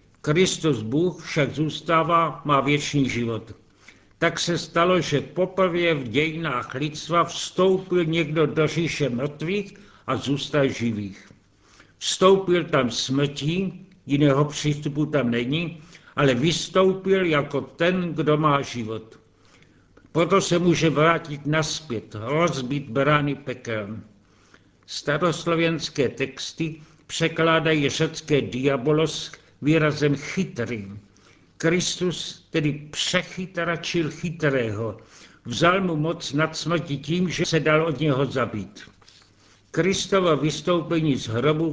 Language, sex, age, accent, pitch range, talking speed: Czech, male, 60-79, native, 135-165 Hz, 105 wpm